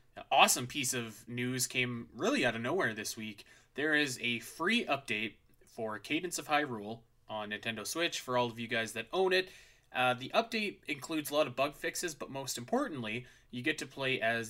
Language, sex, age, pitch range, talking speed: English, male, 20-39, 115-140 Hz, 200 wpm